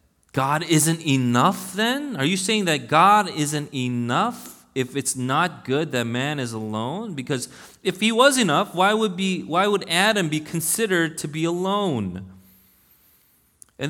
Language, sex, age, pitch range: English, male, 30-49, 105-165 Hz